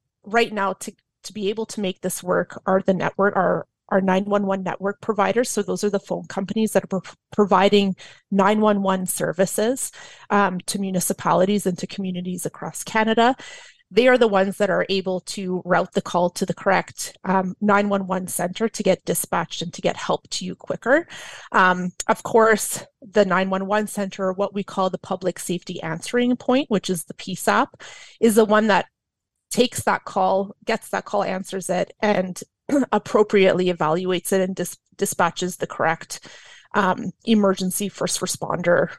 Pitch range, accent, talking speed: 185-210 Hz, American, 180 wpm